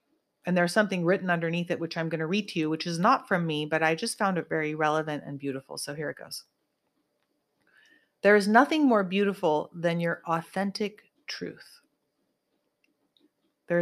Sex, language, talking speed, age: female, English, 180 wpm, 30-49